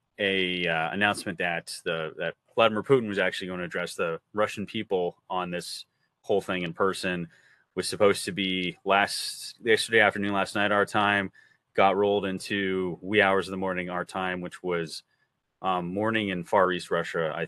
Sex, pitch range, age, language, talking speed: male, 85-100 Hz, 30-49, English, 180 wpm